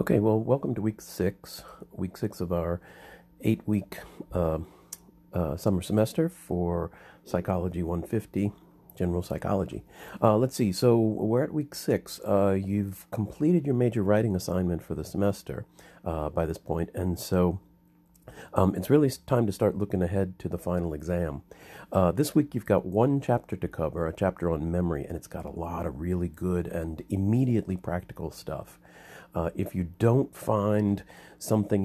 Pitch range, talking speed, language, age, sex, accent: 85-110 Hz, 160 wpm, English, 50-69, male, American